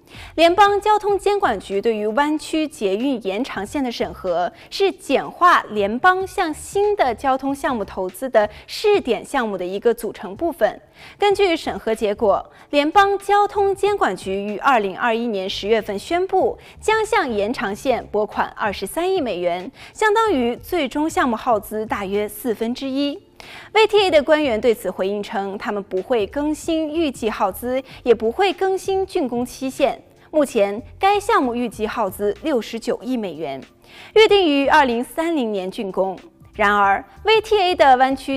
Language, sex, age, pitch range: Chinese, female, 20-39, 210-350 Hz